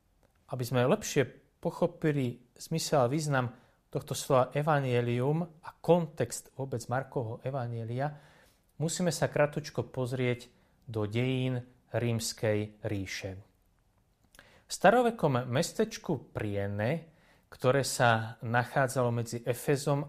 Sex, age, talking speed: male, 30-49, 95 wpm